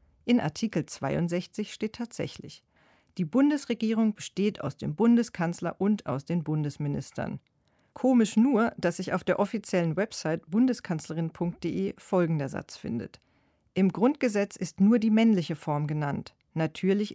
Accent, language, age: German, German, 40-59